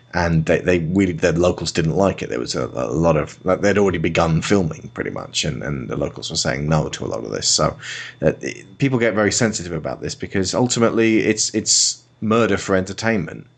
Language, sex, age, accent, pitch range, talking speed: English, male, 30-49, British, 85-110 Hz, 215 wpm